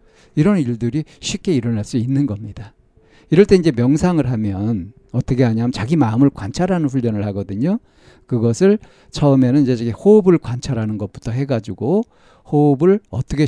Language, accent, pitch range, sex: Korean, native, 115-160 Hz, male